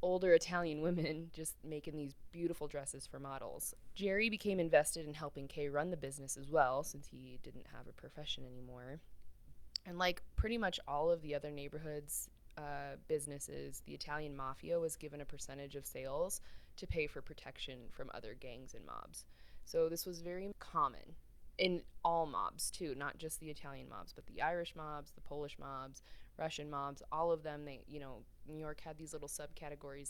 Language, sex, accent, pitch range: English, female, American, 135-160 Hz